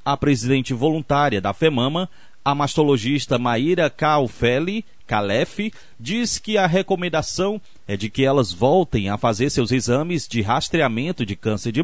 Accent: Brazilian